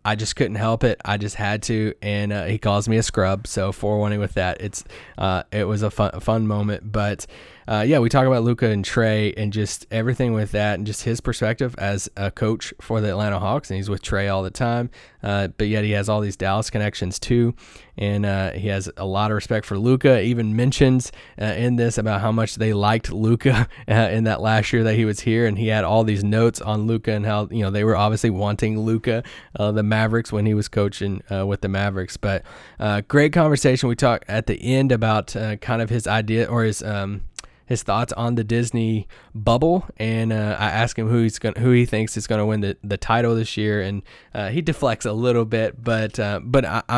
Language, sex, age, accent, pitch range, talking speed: English, male, 20-39, American, 105-120 Hz, 235 wpm